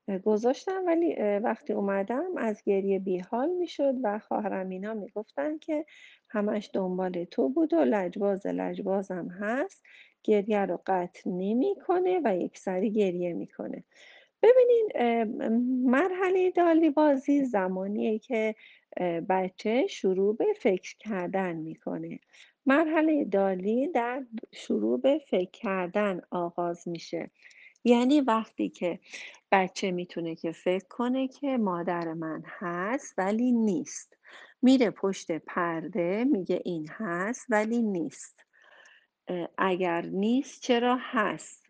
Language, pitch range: Persian, 185-270 Hz